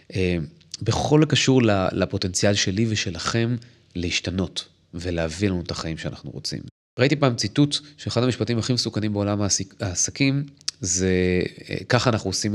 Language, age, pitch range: Hebrew, 30-49, 85-110 Hz